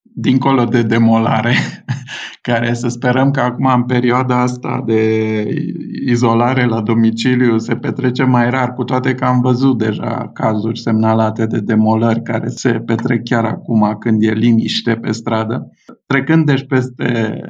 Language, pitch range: Romanian, 120-150 Hz